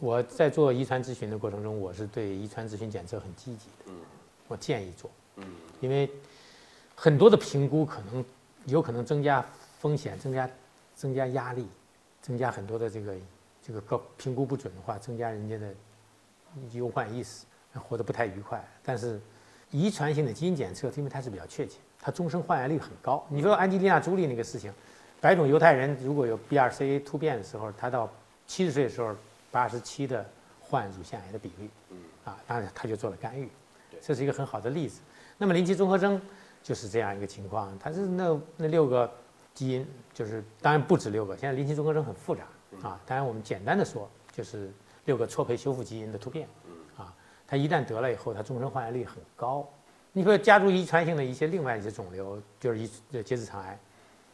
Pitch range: 110-145 Hz